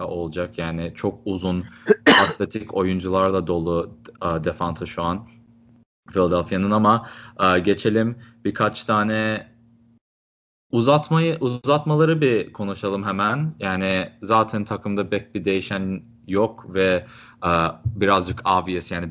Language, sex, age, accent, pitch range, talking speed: Turkish, male, 30-49, native, 95-110 Hz, 105 wpm